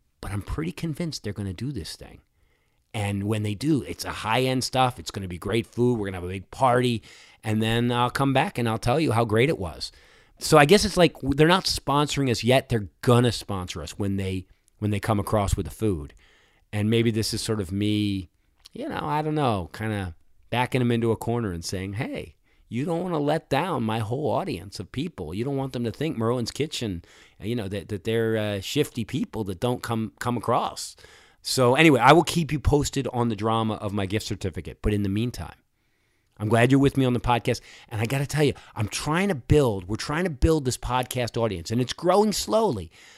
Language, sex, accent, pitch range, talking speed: English, male, American, 100-135 Hz, 235 wpm